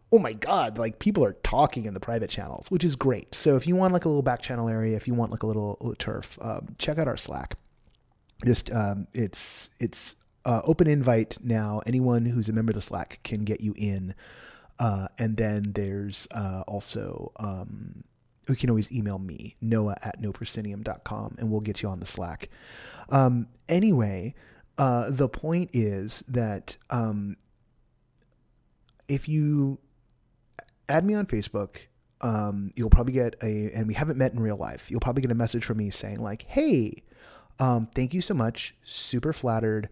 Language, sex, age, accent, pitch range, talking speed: English, male, 30-49, American, 105-125 Hz, 180 wpm